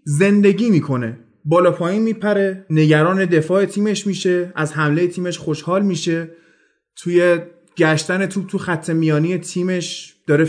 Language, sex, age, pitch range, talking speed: Persian, male, 30-49, 160-205 Hz, 125 wpm